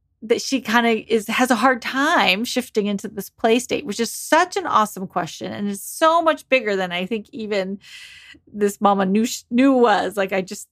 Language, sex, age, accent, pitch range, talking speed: English, female, 30-49, American, 195-265 Hz, 200 wpm